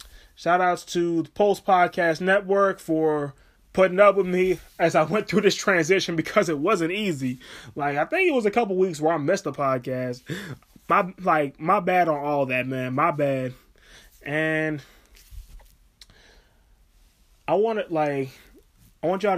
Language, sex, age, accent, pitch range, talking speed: English, male, 20-39, American, 135-170 Hz, 165 wpm